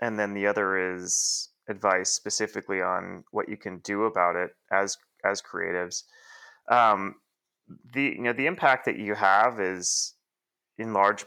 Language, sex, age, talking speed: English, male, 30-49, 155 wpm